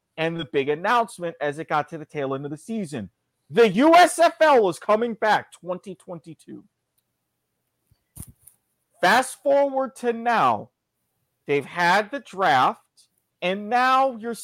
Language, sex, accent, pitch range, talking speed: English, male, American, 145-225 Hz, 130 wpm